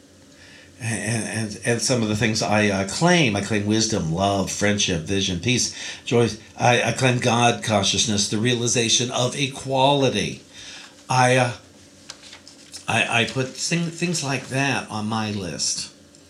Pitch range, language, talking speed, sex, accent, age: 105-145 Hz, English, 140 wpm, male, American, 50-69